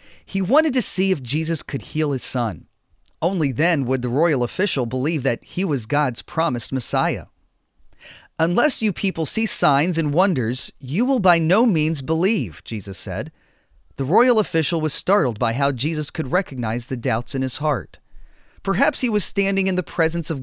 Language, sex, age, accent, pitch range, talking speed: English, male, 30-49, American, 130-180 Hz, 180 wpm